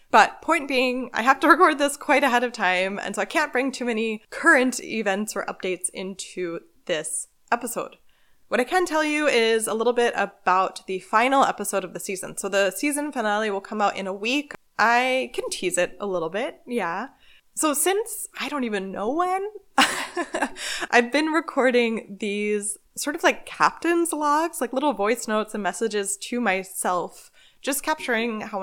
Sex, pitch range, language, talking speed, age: female, 195-275 Hz, English, 180 wpm, 20-39